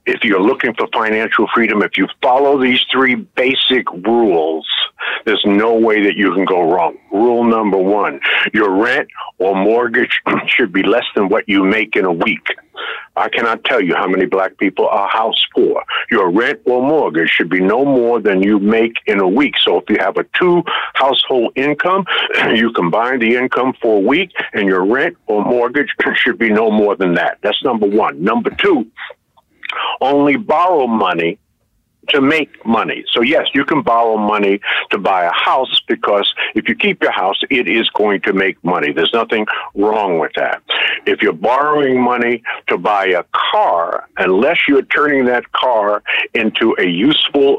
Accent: American